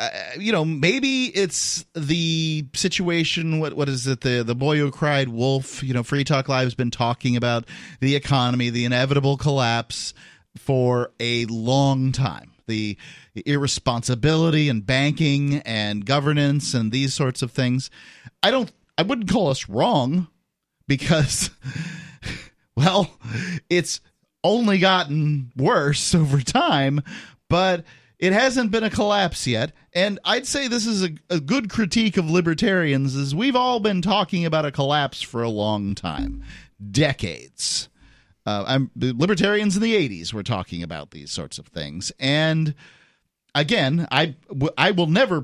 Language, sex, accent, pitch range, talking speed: English, male, American, 125-175 Hz, 150 wpm